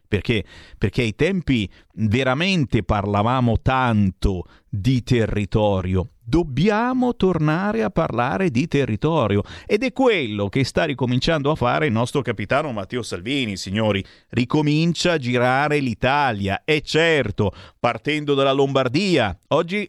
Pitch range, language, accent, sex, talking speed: 105-165 Hz, Italian, native, male, 120 wpm